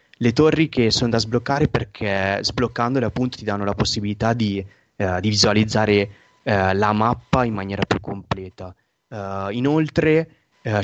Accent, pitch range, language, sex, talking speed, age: native, 105-120 Hz, Italian, male, 150 wpm, 20-39